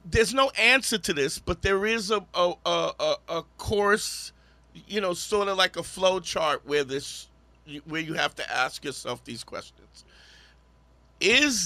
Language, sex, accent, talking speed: English, male, American, 165 wpm